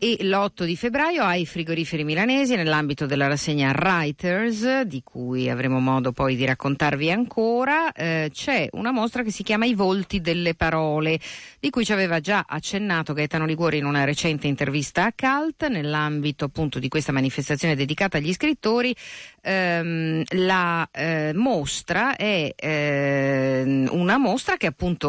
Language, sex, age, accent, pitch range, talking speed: Italian, female, 50-69, native, 140-195 Hz, 145 wpm